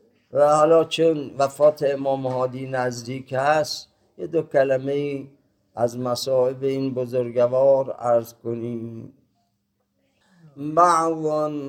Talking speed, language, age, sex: 90 wpm, Persian, 50-69, male